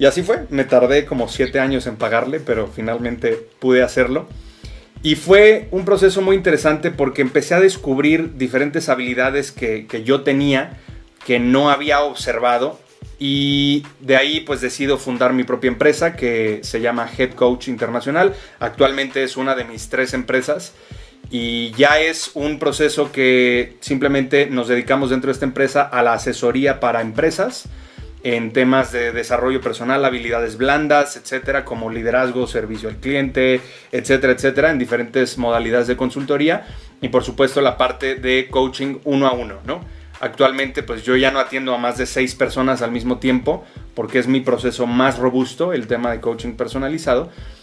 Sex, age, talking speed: male, 30-49, 165 wpm